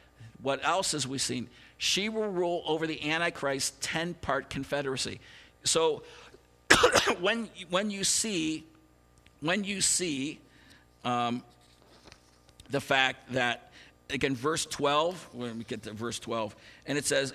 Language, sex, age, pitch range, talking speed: English, male, 50-69, 130-170 Hz, 130 wpm